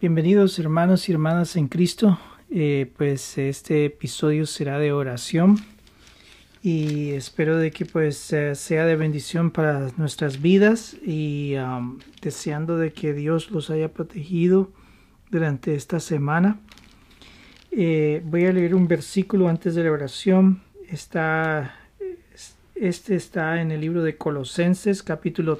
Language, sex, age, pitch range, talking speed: Spanish, male, 40-59, 155-180 Hz, 125 wpm